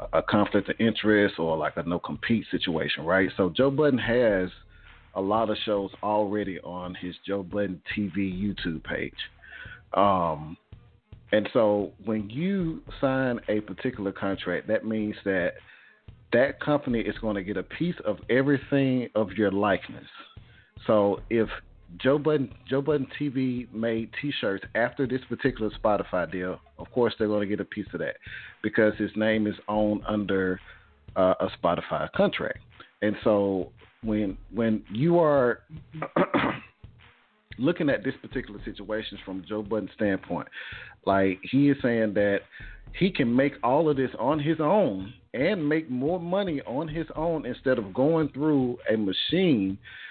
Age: 40-59